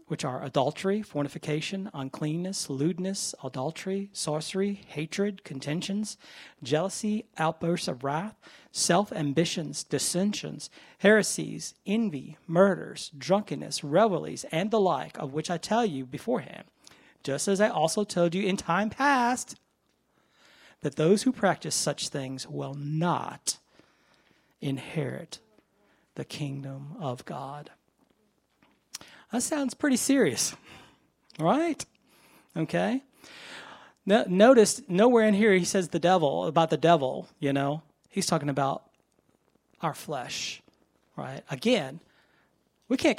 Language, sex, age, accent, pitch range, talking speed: English, male, 40-59, American, 150-195 Hz, 110 wpm